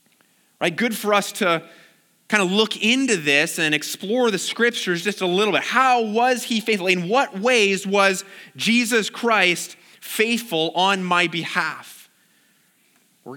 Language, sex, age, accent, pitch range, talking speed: English, male, 30-49, American, 155-205 Hz, 150 wpm